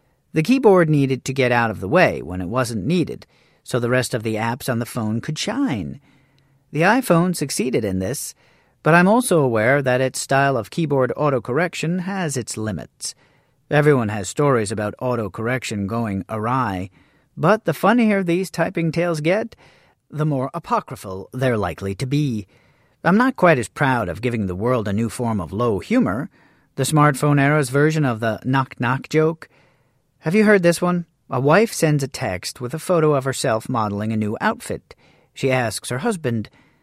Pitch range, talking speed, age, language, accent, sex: 115-155 Hz, 180 wpm, 40-59, English, American, male